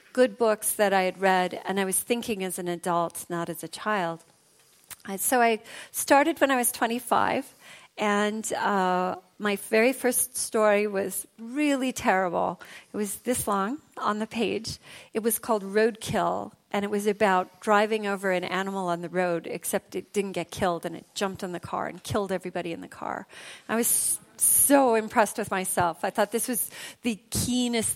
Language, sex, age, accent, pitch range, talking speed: Swedish, female, 40-59, American, 185-230 Hz, 180 wpm